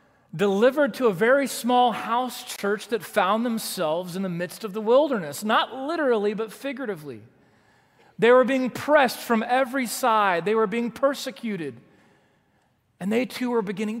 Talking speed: 155 wpm